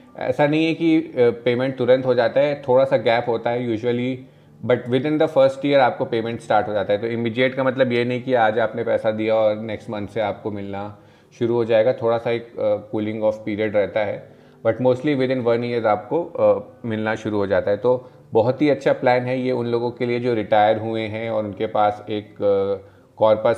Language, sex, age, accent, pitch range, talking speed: Hindi, male, 30-49, native, 110-130 Hz, 225 wpm